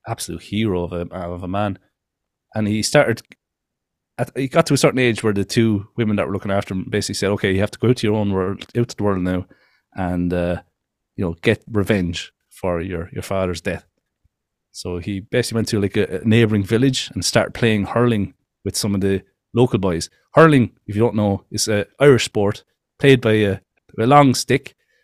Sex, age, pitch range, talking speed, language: male, 30-49, 95-120 Hz, 215 wpm, English